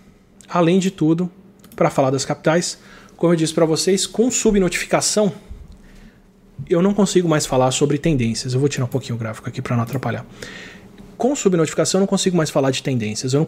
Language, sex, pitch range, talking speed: Portuguese, male, 135-185 Hz, 190 wpm